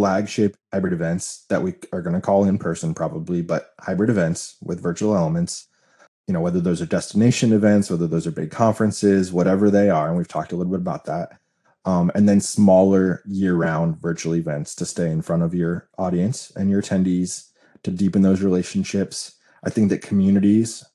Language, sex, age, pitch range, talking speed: English, male, 20-39, 90-105 Hz, 190 wpm